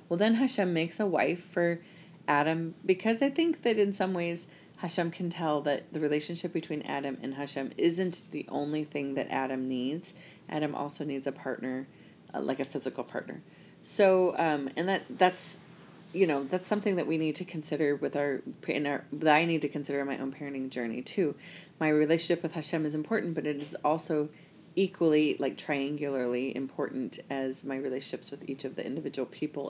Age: 30-49